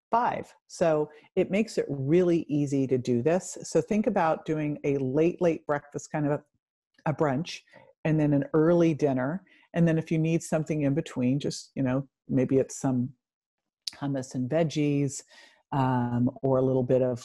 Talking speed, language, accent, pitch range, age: 175 wpm, English, American, 130-165 Hz, 50-69